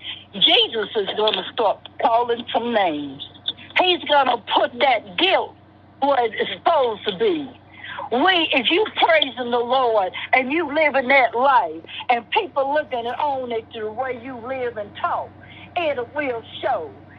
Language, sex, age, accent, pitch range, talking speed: English, female, 60-79, American, 200-275 Hz, 155 wpm